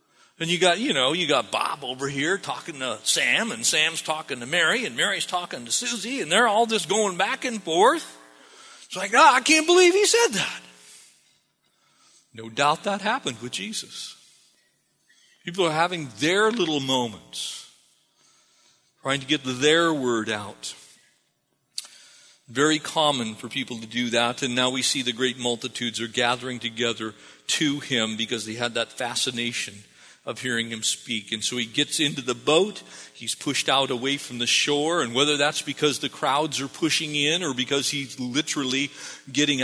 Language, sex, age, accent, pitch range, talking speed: English, male, 40-59, American, 120-155 Hz, 175 wpm